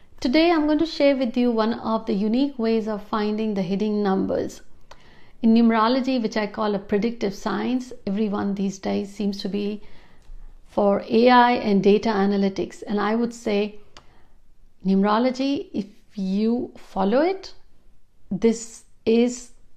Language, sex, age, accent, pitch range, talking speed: Hindi, female, 60-79, native, 200-250 Hz, 145 wpm